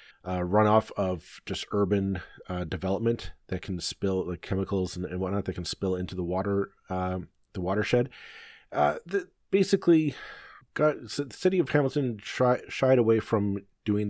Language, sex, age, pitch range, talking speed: English, male, 40-59, 95-115 Hz, 165 wpm